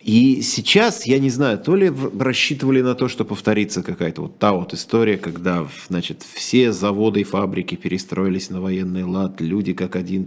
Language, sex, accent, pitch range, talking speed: Russian, male, native, 110-165 Hz, 175 wpm